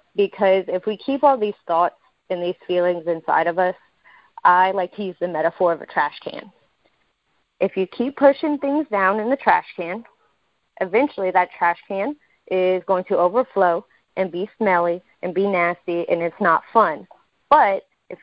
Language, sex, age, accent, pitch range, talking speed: English, female, 30-49, American, 180-215 Hz, 175 wpm